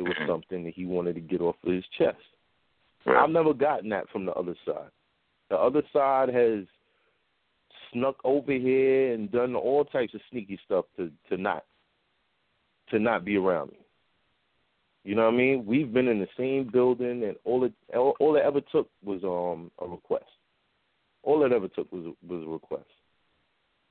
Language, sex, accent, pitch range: English, male, American, 105-145 Hz